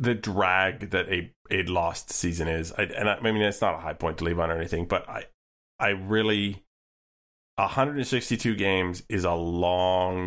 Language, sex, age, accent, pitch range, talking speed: English, male, 30-49, American, 85-110 Hz, 185 wpm